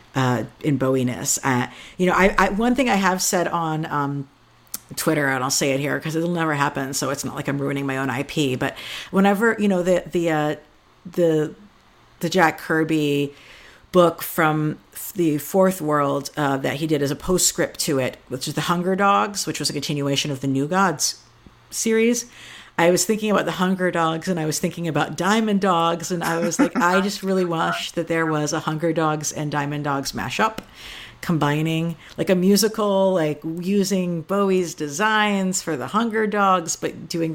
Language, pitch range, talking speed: English, 145-190 Hz, 190 wpm